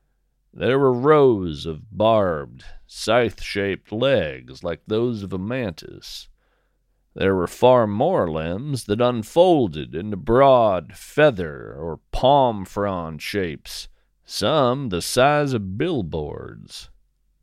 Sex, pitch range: male, 85-125 Hz